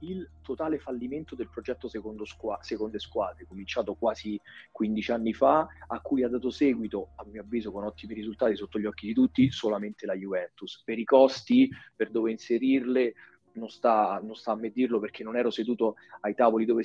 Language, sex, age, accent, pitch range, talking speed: Italian, male, 30-49, native, 115-185 Hz, 185 wpm